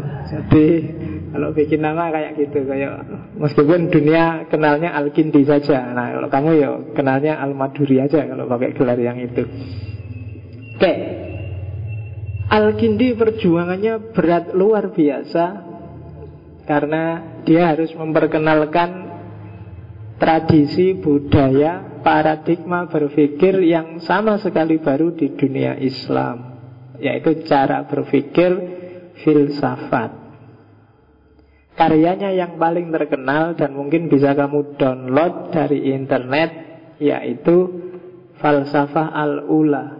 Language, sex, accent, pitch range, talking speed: Indonesian, male, native, 135-165 Hz, 95 wpm